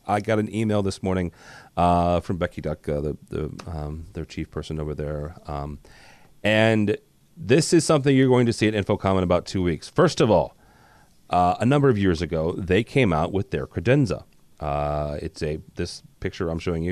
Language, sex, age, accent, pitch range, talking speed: English, male, 30-49, American, 85-105 Hz, 200 wpm